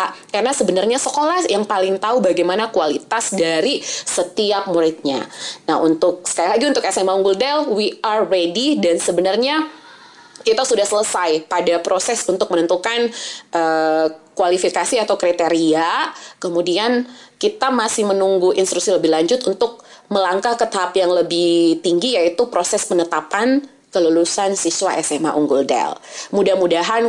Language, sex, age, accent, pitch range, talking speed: Indonesian, female, 20-39, native, 175-215 Hz, 130 wpm